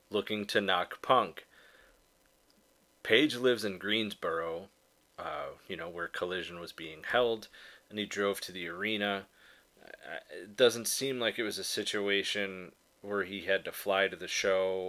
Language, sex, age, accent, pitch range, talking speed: English, male, 30-49, American, 100-120 Hz, 155 wpm